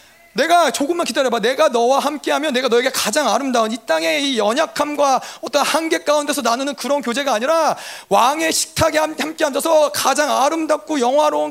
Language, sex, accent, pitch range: Korean, male, native, 240-310 Hz